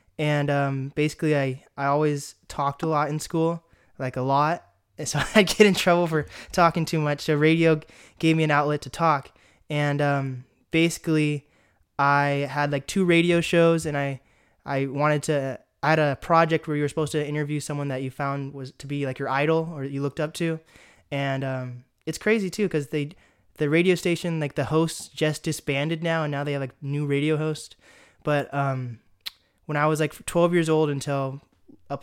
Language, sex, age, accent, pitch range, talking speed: English, male, 20-39, American, 135-160 Hz, 195 wpm